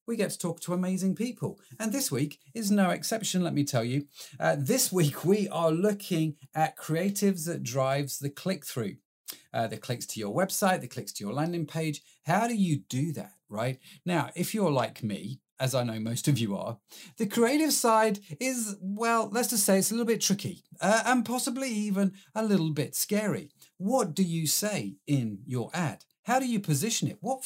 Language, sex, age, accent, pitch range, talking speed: English, male, 40-59, British, 145-195 Hz, 205 wpm